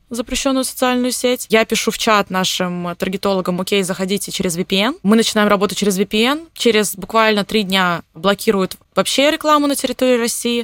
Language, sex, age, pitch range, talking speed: Russian, female, 20-39, 190-230 Hz, 160 wpm